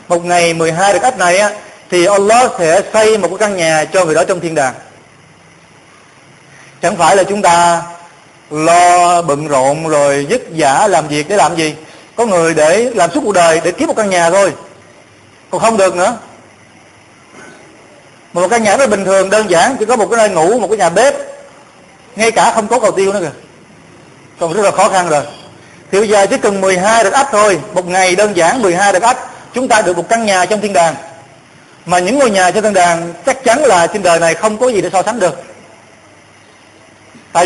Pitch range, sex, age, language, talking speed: 170-220 Hz, male, 20-39, Vietnamese, 215 wpm